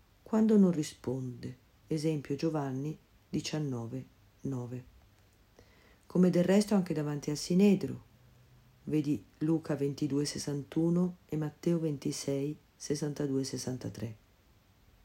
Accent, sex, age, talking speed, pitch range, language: native, female, 50-69, 90 wpm, 130-185 Hz, Italian